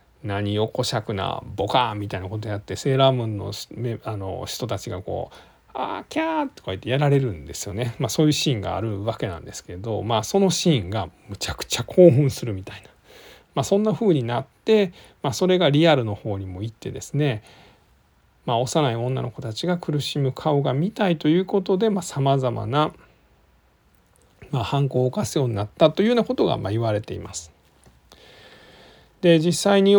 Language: Japanese